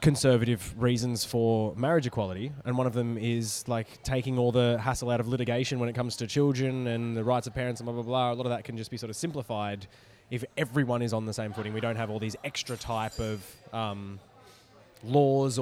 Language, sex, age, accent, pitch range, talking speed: English, male, 20-39, Australian, 105-125 Hz, 225 wpm